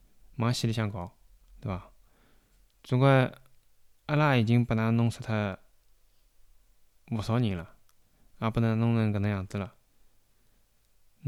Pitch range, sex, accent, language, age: 100-120 Hz, male, Korean, Chinese, 20-39